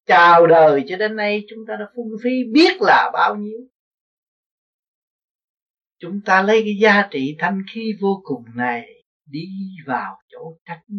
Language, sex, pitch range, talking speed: Vietnamese, male, 170-245 Hz, 160 wpm